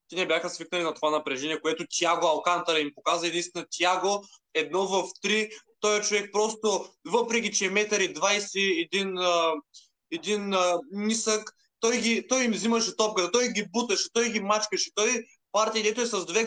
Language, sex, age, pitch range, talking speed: Bulgarian, male, 20-39, 170-220 Hz, 180 wpm